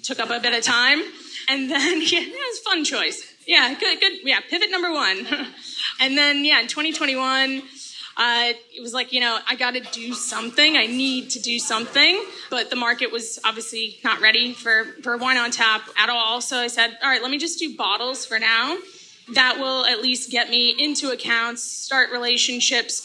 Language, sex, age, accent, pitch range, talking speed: English, female, 20-39, American, 235-295 Hz, 205 wpm